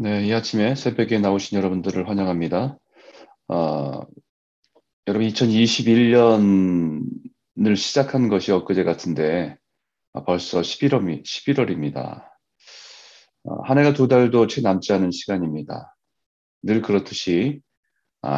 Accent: native